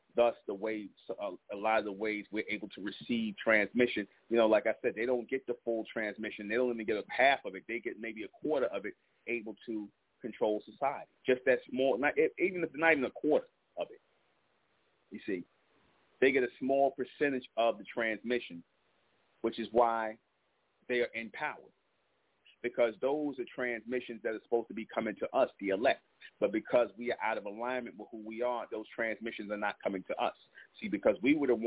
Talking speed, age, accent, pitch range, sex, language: 205 wpm, 30-49, American, 110-125 Hz, male, English